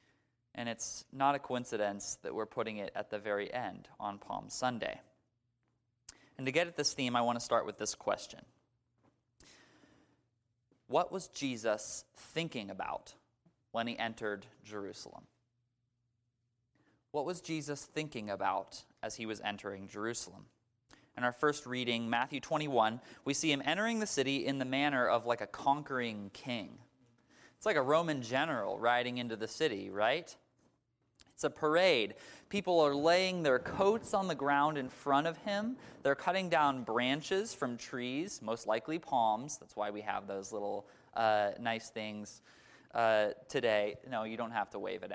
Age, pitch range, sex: 20-39, 115-145 Hz, male